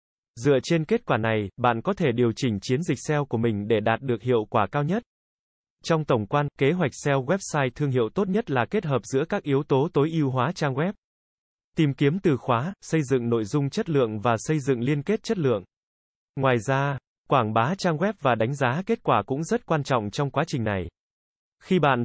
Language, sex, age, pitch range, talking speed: Vietnamese, male, 20-39, 120-160 Hz, 225 wpm